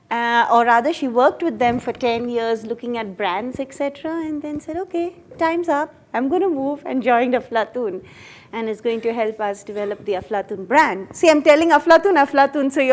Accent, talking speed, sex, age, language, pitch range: Indian, 205 wpm, female, 30-49, English, 210-275 Hz